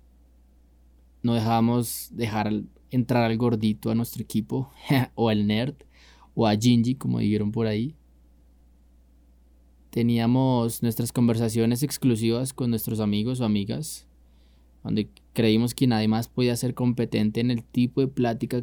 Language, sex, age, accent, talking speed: Spanish, male, 20-39, Colombian, 130 wpm